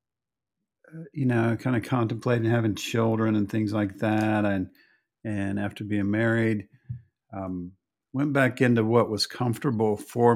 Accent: American